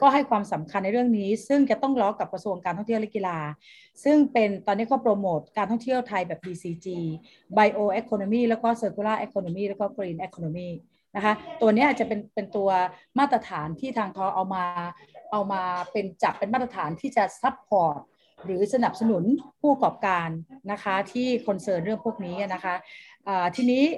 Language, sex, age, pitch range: Thai, female, 30-49, 185-235 Hz